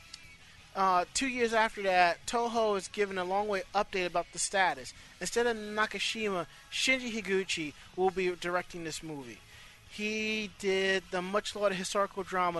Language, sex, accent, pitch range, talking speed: English, male, American, 160-210 Hz, 150 wpm